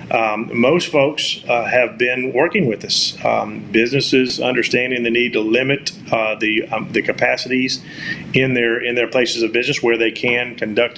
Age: 40-59